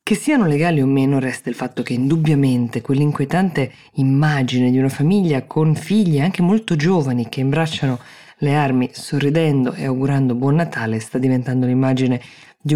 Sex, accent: female, native